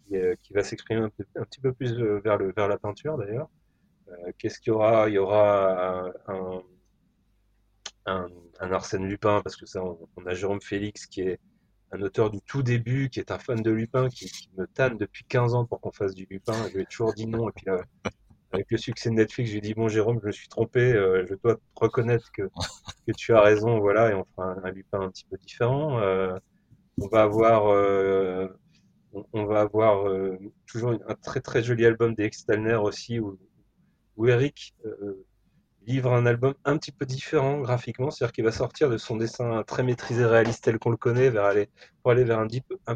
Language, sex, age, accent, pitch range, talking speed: French, male, 30-49, French, 100-120 Hz, 215 wpm